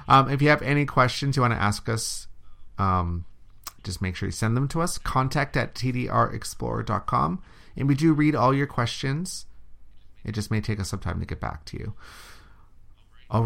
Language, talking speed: English, 190 wpm